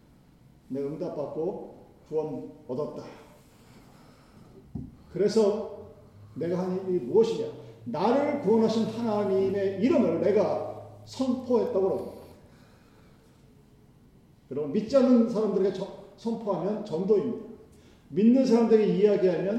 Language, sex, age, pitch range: Korean, male, 40-59, 190-250 Hz